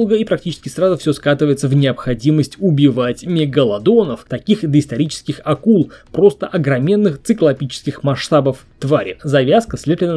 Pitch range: 140-185 Hz